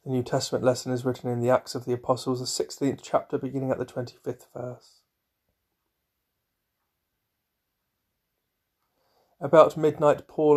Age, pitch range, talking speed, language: 30-49, 125-145 Hz, 130 wpm, English